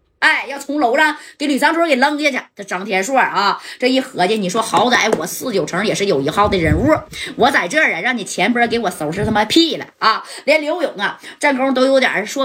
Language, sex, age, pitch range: Chinese, female, 20-39, 200-305 Hz